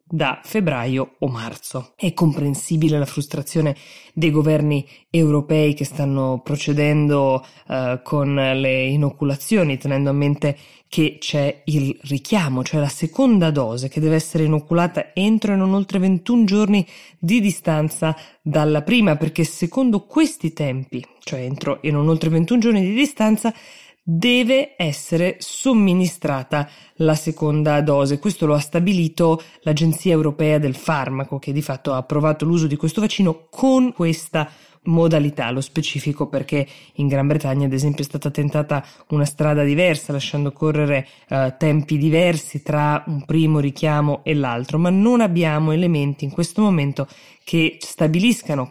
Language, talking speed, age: Italian, 140 wpm, 20-39